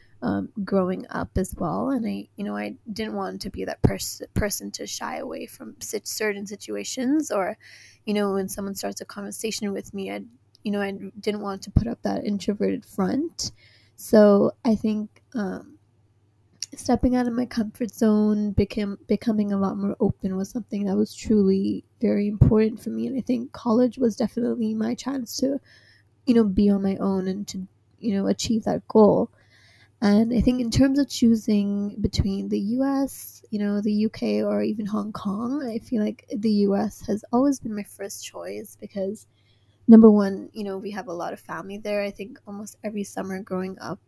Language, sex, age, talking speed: English, female, 20-39, 190 wpm